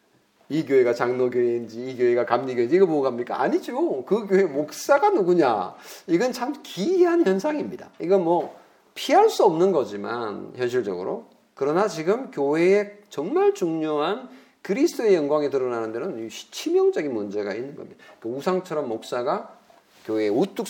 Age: 40-59